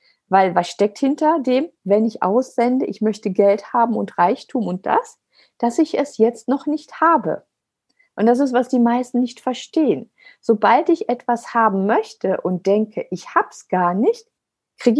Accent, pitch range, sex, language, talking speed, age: German, 190-280 Hz, female, German, 170 wpm, 50-69